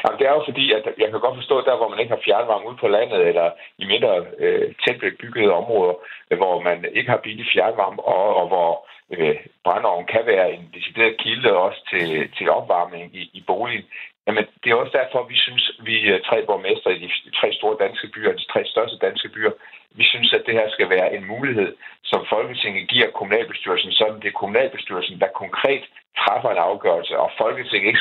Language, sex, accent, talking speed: Danish, male, native, 205 wpm